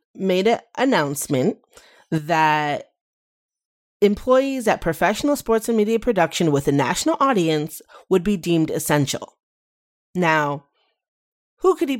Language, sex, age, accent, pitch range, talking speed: English, female, 30-49, American, 165-230 Hz, 115 wpm